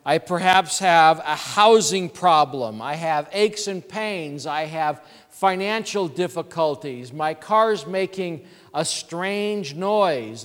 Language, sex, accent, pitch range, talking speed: English, male, American, 150-205 Hz, 120 wpm